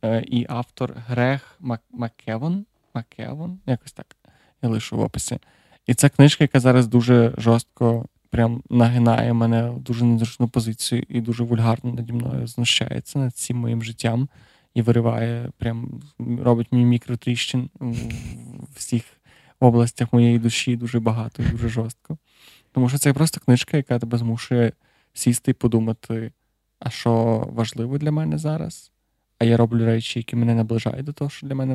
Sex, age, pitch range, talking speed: male, 20-39, 115-130 Hz, 150 wpm